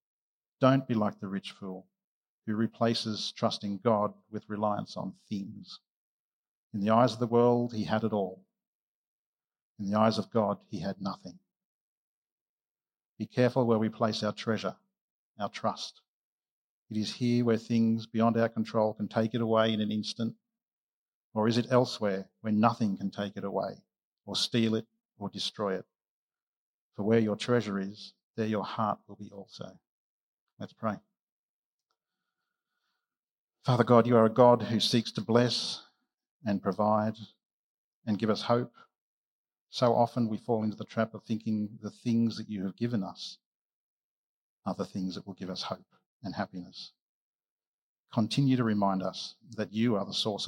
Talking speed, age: 160 wpm, 50-69